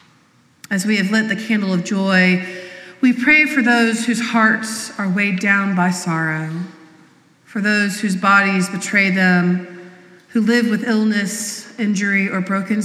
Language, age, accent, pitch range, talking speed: English, 30-49, American, 185-220 Hz, 150 wpm